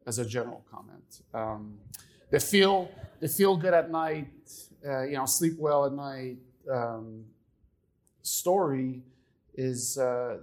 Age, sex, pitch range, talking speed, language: 40-59, male, 120-150 Hz, 130 wpm, English